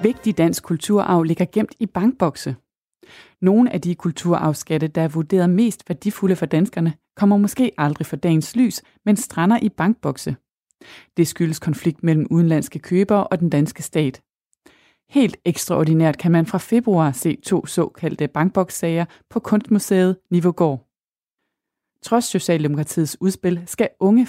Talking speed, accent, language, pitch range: 140 wpm, native, Danish, 160-210 Hz